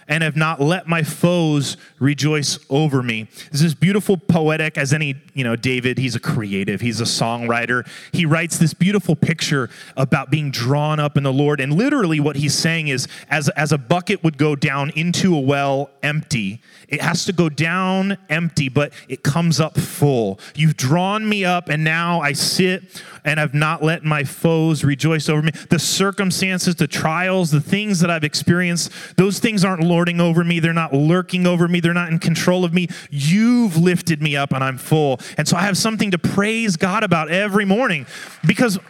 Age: 30-49